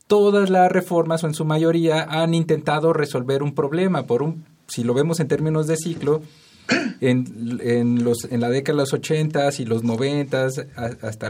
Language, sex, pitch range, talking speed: Spanish, male, 125-160 Hz, 180 wpm